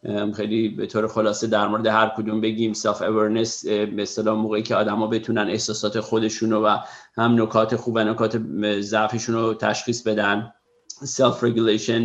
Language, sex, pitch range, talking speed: Persian, male, 105-115 Hz, 145 wpm